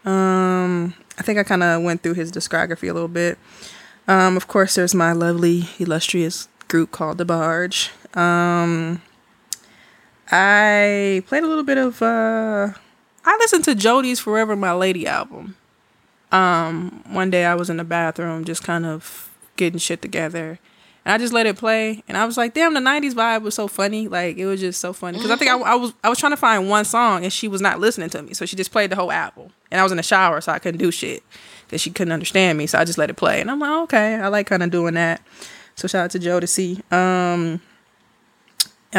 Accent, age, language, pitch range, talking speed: American, 20-39, English, 170-210 Hz, 225 wpm